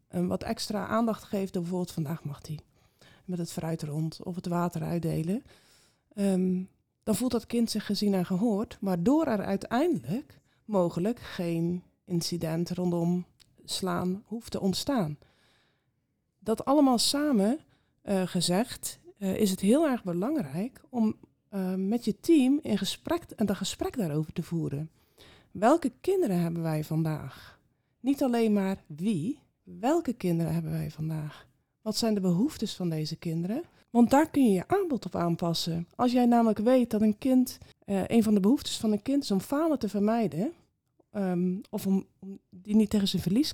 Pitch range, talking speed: 175-235 Hz, 155 wpm